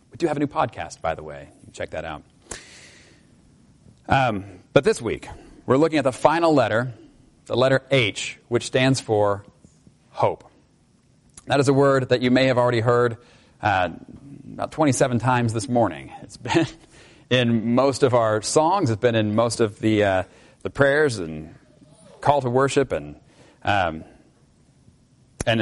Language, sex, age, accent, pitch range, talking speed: English, male, 40-59, American, 110-130 Hz, 165 wpm